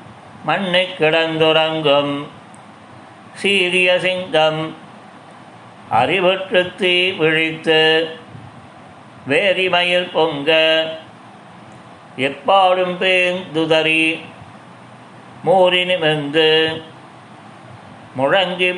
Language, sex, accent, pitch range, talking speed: Tamil, male, native, 160-180 Hz, 50 wpm